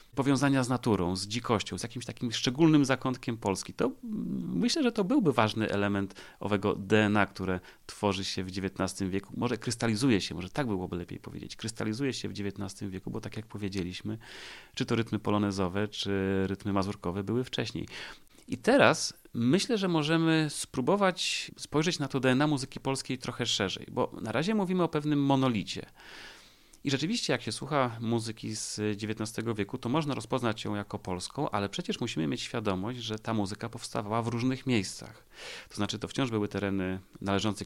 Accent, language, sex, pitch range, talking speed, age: native, Polish, male, 100-125 Hz, 170 wpm, 30-49